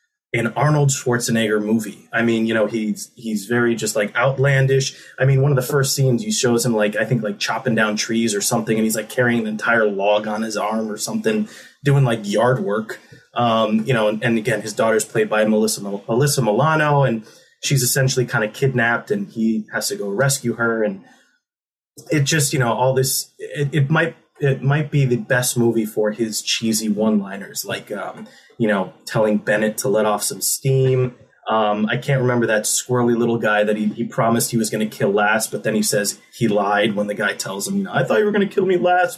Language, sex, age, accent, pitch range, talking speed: English, male, 20-39, American, 110-135 Hz, 225 wpm